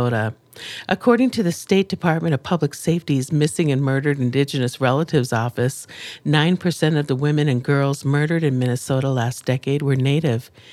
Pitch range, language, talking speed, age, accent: 130-165 Hz, English, 150 wpm, 50-69, American